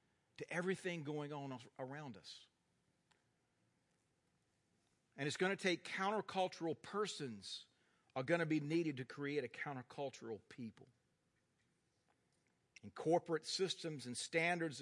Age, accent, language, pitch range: 50-69, American, English, 145-210 Hz